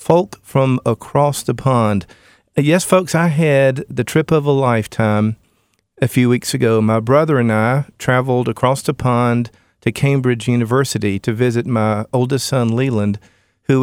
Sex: male